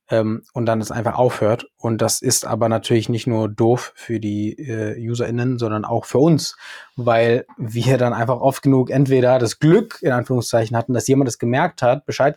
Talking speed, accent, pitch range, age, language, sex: 190 wpm, German, 115-130 Hz, 20-39, German, male